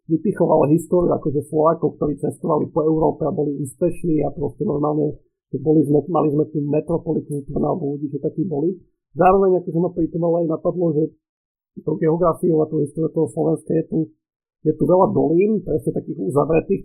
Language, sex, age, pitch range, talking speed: Slovak, male, 50-69, 150-170 Hz, 165 wpm